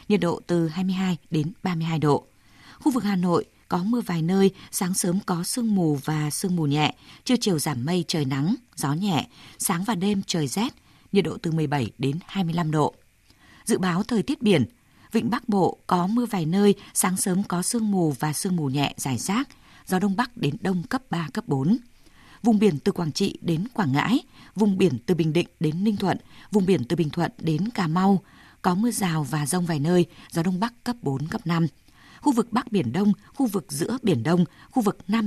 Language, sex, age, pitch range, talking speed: Vietnamese, female, 20-39, 155-205 Hz, 215 wpm